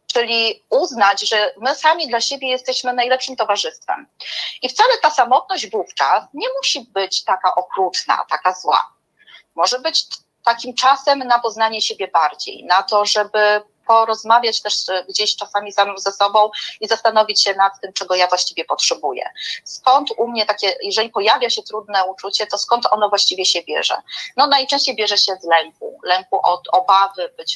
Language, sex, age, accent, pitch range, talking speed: Polish, female, 30-49, native, 190-235 Hz, 160 wpm